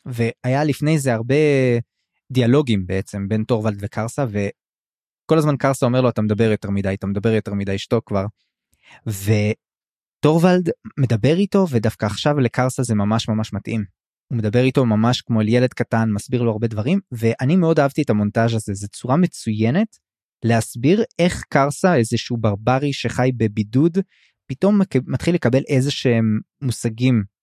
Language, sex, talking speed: Hebrew, male, 150 wpm